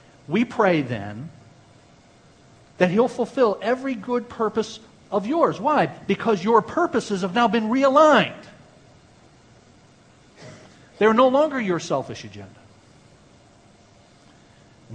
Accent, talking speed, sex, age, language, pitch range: American, 100 wpm, male, 50-69, English, 120-160 Hz